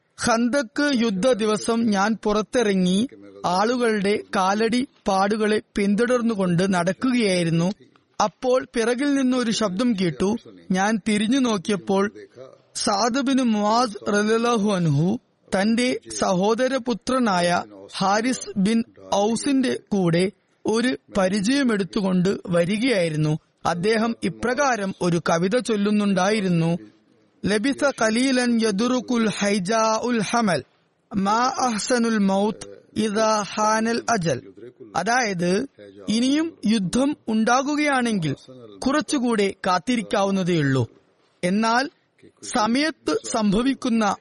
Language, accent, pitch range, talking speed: Malayalam, native, 195-245 Hz, 75 wpm